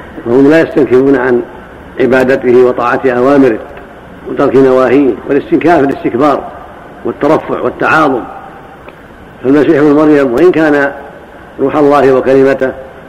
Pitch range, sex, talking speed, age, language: 125-145 Hz, male, 95 wpm, 70-89, Arabic